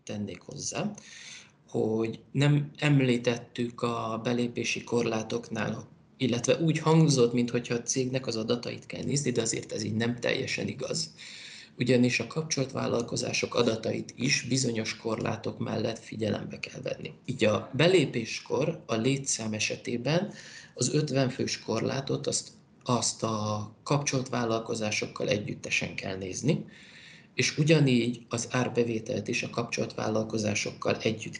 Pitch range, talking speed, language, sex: 110-130 Hz, 120 wpm, Hungarian, male